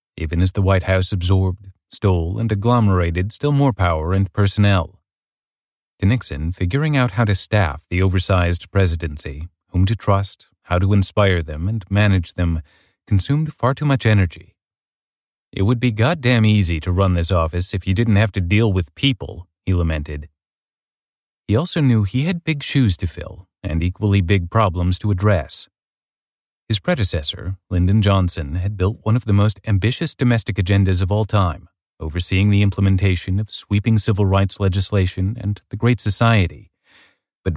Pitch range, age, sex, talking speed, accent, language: 90-105 Hz, 30-49, male, 165 wpm, American, English